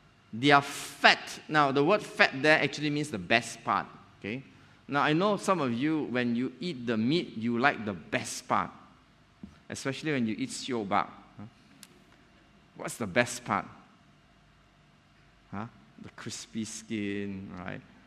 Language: English